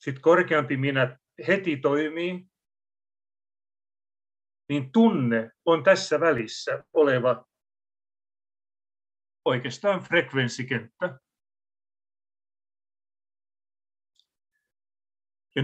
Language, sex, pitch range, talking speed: Finnish, male, 100-160 Hz, 55 wpm